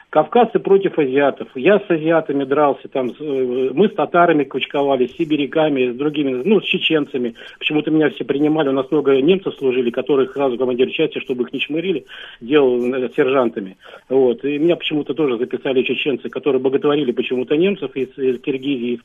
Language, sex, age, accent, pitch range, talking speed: Russian, male, 40-59, native, 140-175 Hz, 175 wpm